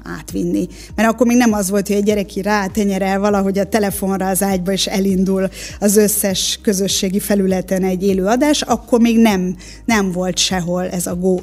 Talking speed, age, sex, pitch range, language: 180 wpm, 20-39, female, 185-215 Hz, Hungarian